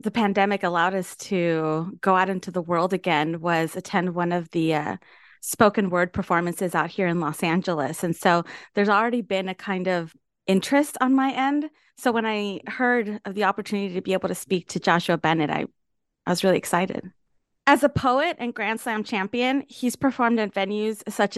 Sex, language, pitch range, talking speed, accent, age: female, English, 185-230 Hz, 195 wpm, American, 30-49